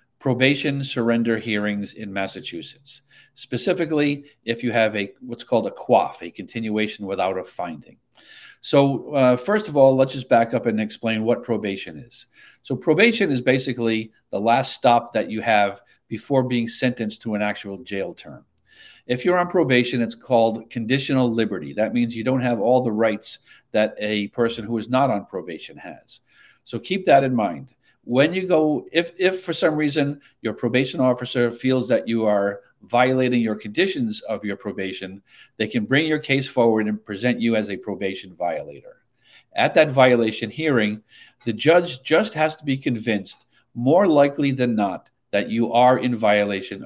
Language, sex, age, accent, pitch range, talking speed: English, male, 50-69, American, 110-135 Hz, 175 wpm